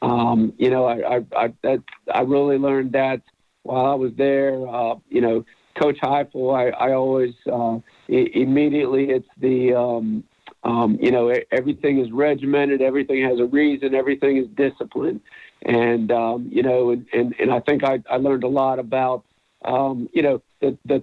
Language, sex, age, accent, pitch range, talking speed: English, male, 50-69, American, 120-140 Hz, 175 wpm